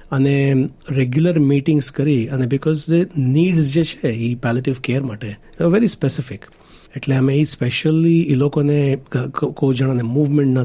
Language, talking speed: Gujarati, 140 wpm